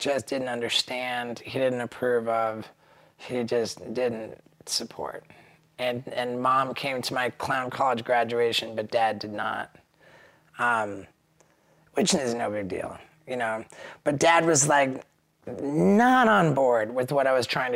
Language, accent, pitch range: English, American, 115-130 Hz